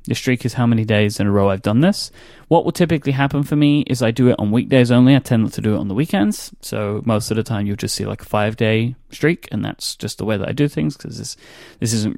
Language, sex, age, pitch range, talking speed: English, male, 30-49, 105-130 Hz, 290 wpm